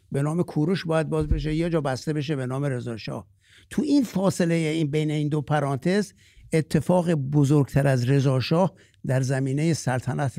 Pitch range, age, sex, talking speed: 125-165 Hz, 60-79, male, 160 wpm